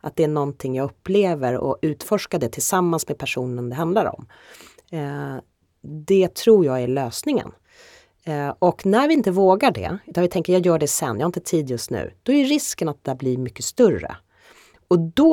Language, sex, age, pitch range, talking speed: Swedish, female, 30-49, 130-185 Hz, 190 wpm